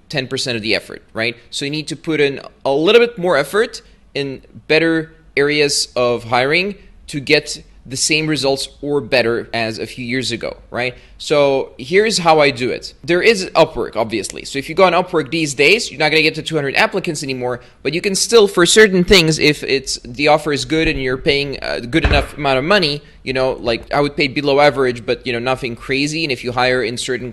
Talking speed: 220 wpm